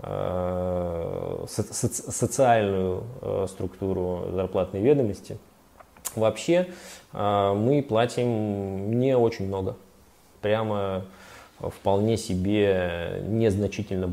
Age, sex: 20-39, male